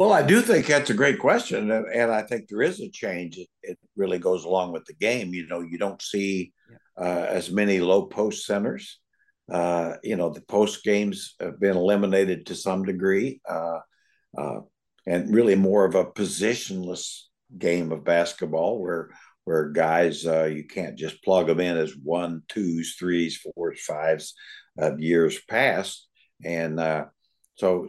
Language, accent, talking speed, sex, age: English, American, 170 wpm, male, 60-79